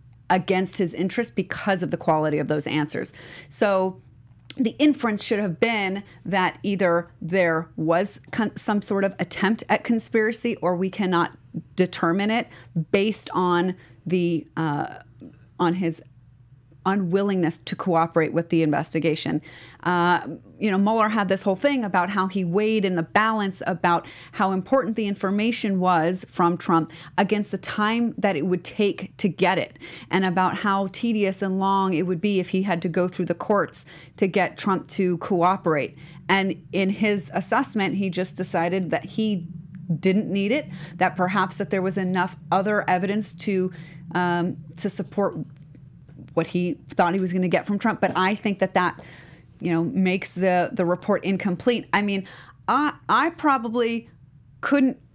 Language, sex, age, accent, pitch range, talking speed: English, female, 30-49, American, 170-205 Hz, 165 wpm